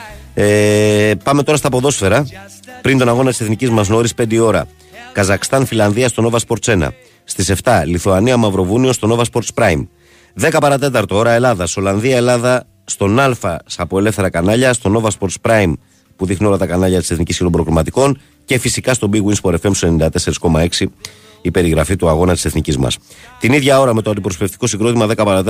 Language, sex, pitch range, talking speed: Greek, male, 85-115 Hz, 175 wpm